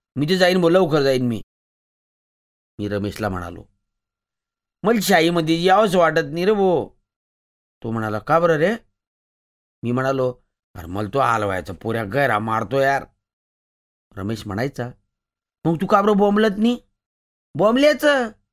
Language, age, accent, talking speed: Marathi, 40-59, native, 125 wpm